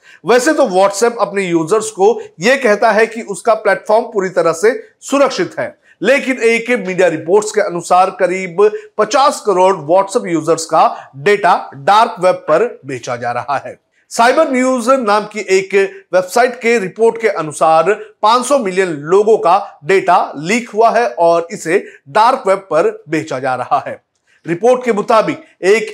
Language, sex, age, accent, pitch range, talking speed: Hindi, male, 40-59, native, 180-240 Hz, 155 wpm